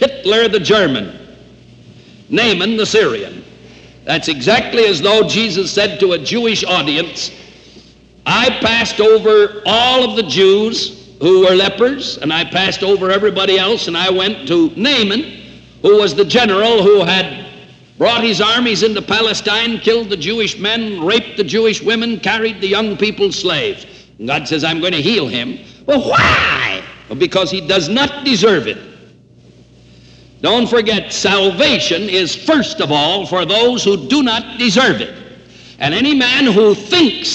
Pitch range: 195-230 Hz